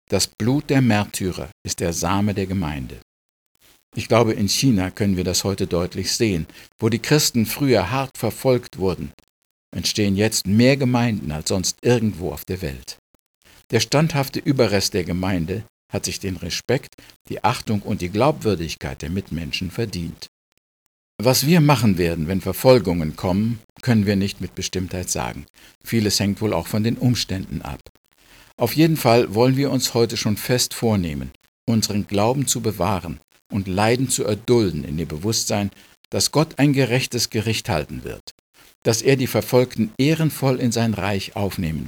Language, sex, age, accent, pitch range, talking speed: German, male, 50-69, German, 90-120 Hz, 160 wpm